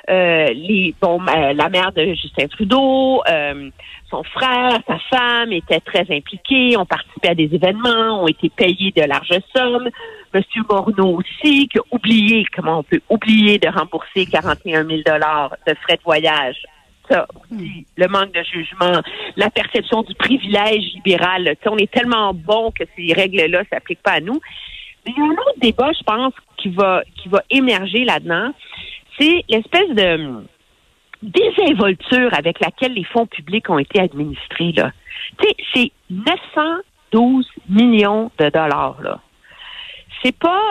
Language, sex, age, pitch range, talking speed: French, female, 50-69, 180-270 Hz, 155 wpm